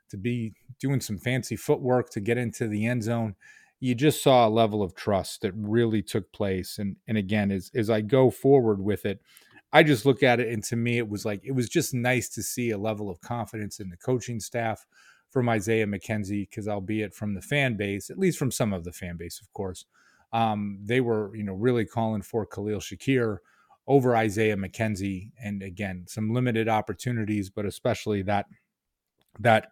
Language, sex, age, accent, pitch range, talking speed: English, male, 30-49, American, 100-120 Hz, 200 wpm